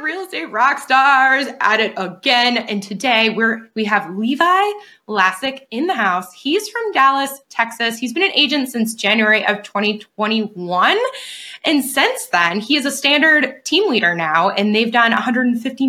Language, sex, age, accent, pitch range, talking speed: English, female, 20-39, American, 210-290 Hz, 160 wpm